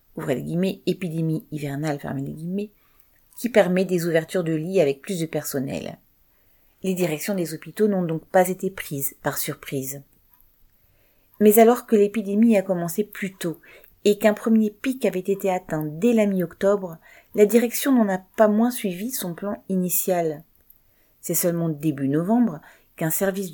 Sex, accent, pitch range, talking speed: female, French, 155-200 Hz, 155 wpm